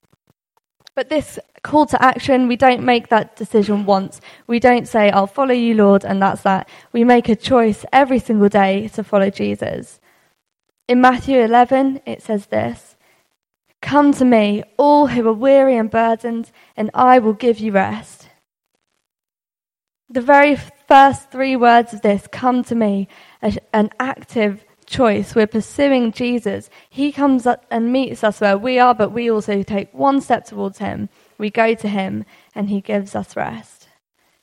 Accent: British